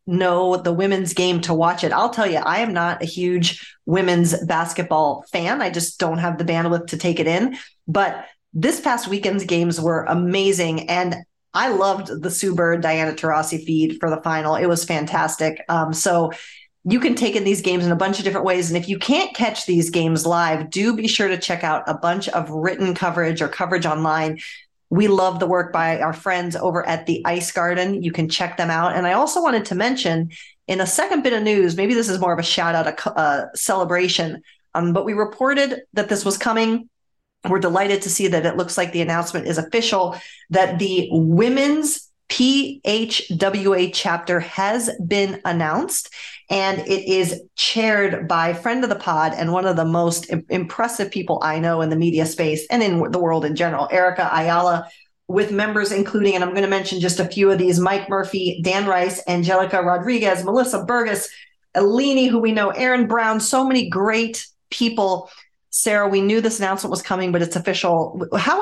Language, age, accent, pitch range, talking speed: English, 30-49, American, 170-200 Hz, 195 wpm